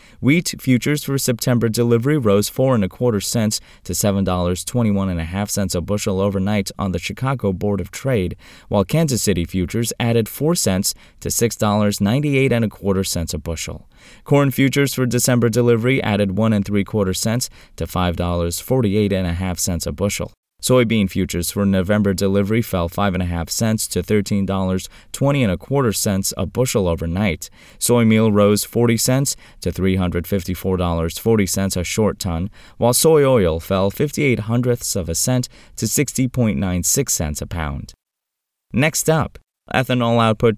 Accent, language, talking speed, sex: American, English, 165 wpm, male